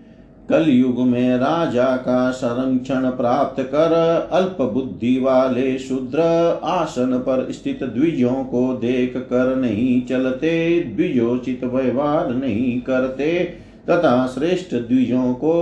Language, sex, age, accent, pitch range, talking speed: Hindi, male, 50-69, native, 130-165 Hz, 105 wpm